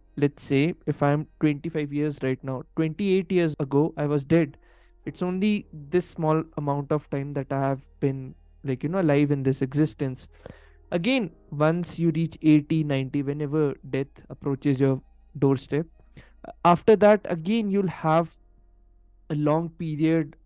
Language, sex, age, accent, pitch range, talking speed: Hindi, male, 20-39, native, 140-185 Hz, 150 wpm